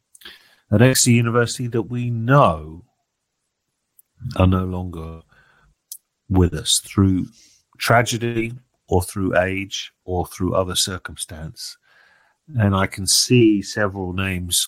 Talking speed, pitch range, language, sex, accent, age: 105 wpm, 90-115 Hz, English, male, British, 40-59